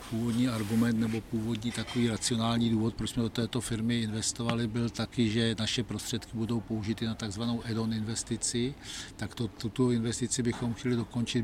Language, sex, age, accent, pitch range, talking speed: Czech, male, 60-79, native, 110-120 Hz, 165 wpm